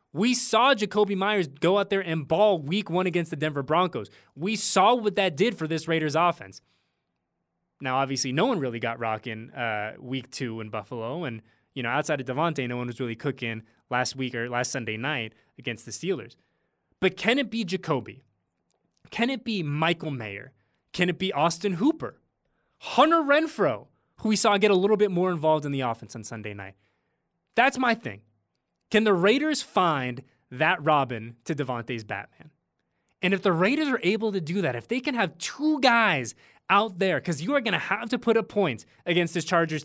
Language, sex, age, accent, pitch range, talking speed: English, male, 20-39, American, 130-205 Hz, 195 wpm